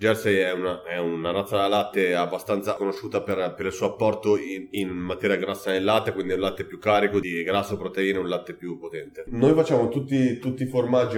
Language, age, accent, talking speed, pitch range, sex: Italian, 30-49, native, 215 wpm, 100-125 Hz, male